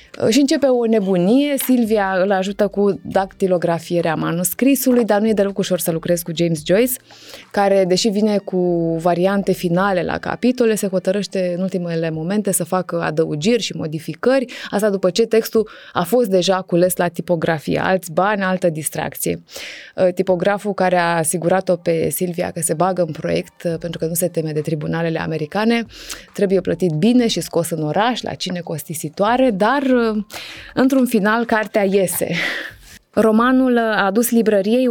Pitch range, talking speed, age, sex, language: 175-215 Hz, 155 wpm, 20-39, female, Romanian